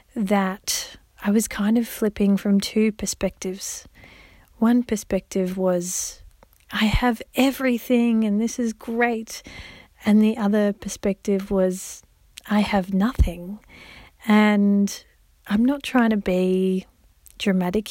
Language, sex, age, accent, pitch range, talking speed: English, female, 40-59, Australian, 190-230 Hz, 115 wpm